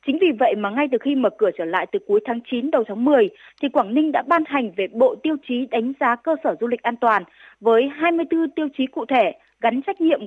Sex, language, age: female, Vietnamese, 20-39